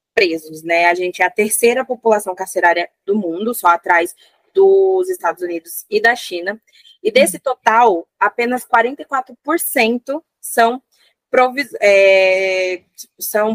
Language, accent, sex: Portuguese, Brazilian, female